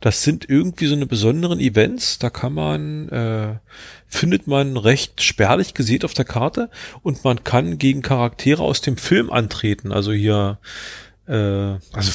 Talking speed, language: 160 wpm, German